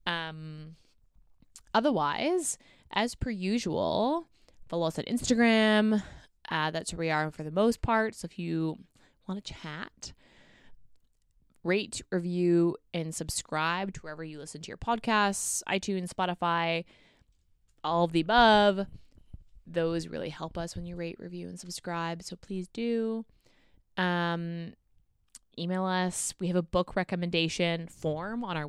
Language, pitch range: English, 165-205 Hz